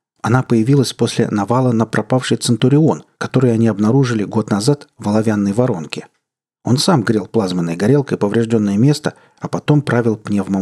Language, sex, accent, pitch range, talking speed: Russian, male, native, 105-130 Hz, 145 wpm